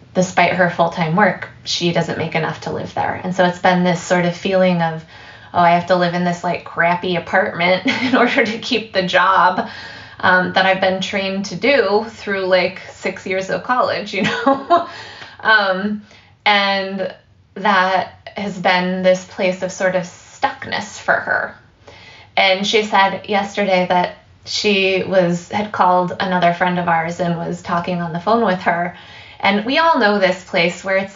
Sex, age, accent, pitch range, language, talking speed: female, 20-39, American, 180-205 Hz, English, 180 wpm